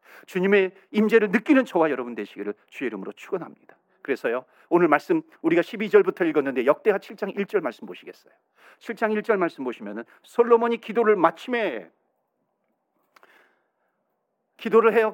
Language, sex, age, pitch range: Korean, male, 40-59, 175-255 Hz